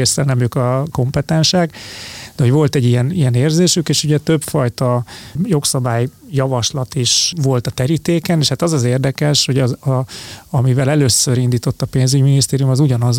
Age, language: 30-49, Hungarian